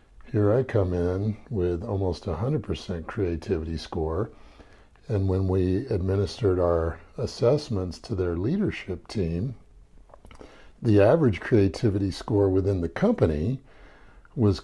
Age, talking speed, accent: 50-69, 115 wpm, American